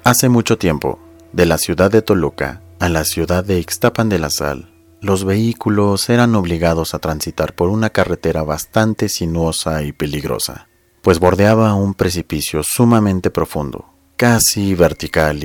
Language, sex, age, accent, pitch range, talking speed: Spanish, male, 40-59, Mexican, 85-110 Hz, 145 wpm